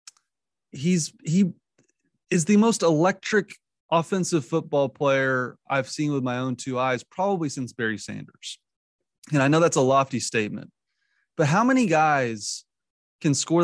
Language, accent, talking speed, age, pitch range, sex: English, American, 145 wpm, 30-49, 125-170 Hz, male